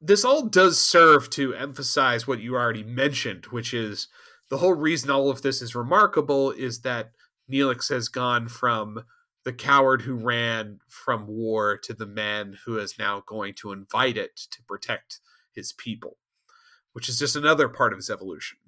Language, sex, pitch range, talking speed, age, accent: English, male, 115-180 Hz, 175 wpm, 30-49, American